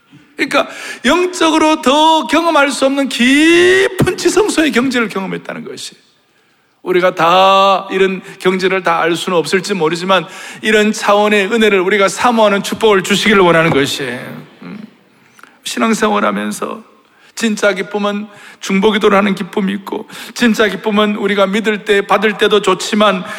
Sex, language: male, Korean